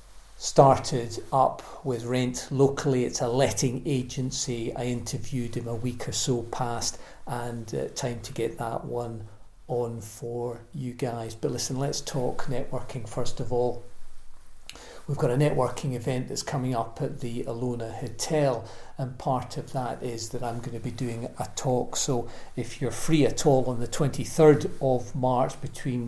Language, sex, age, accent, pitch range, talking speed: English, male, 40-59, British, 120-135 Hz, 170 wpm